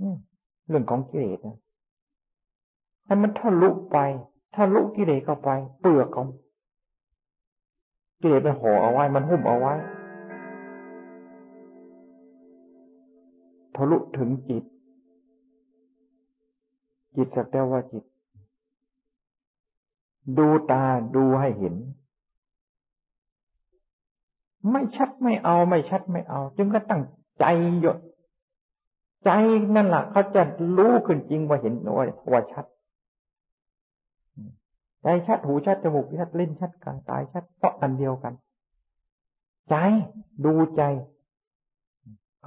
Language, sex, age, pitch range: Thai, male, 60-79, 115-175 Hz